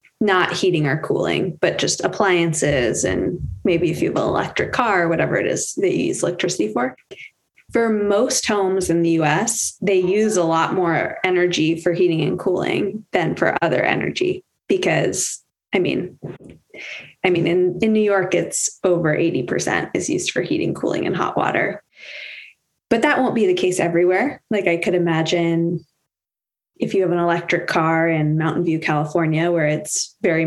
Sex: female